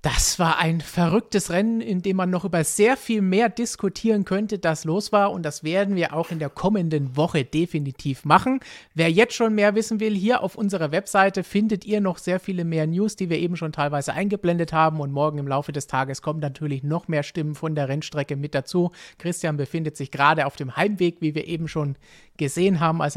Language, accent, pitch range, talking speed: German, German, 150-195 Hz, 215 wpm